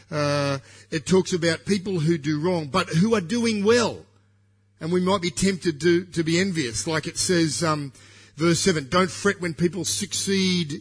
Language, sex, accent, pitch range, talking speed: English, male, Australian, 120-180 Hz, 185 wpm